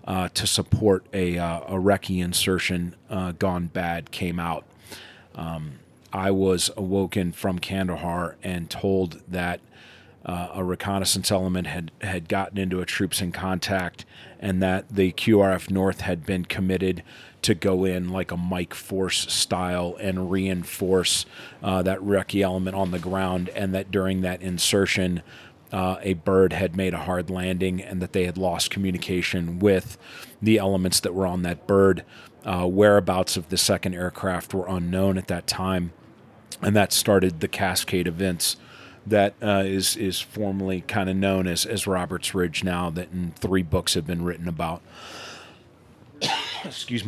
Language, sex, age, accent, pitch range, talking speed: English, male, 40-59, American, 90-100 Hz, 160 wpm